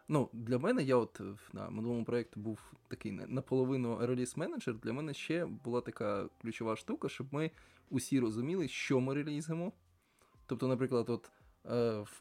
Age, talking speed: 20-39, 150 wpm